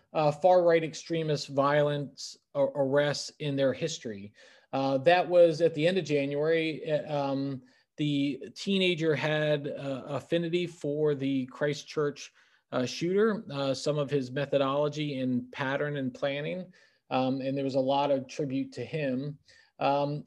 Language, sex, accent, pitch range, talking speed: English, male, American, 135-160 Hz, 140 wpm